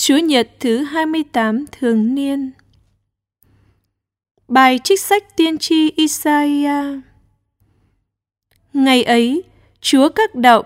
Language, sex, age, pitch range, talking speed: English, female, 20-39, 215-310 Hz, 95 wpm